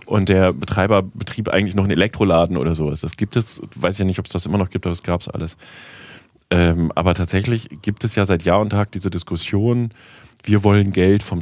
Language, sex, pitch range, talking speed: German, male, 95-110 Hz, 235 wpm